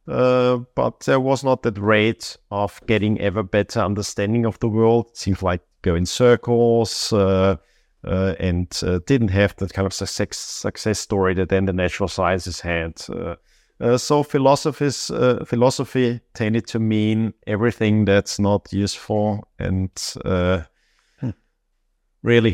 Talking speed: 145 wpm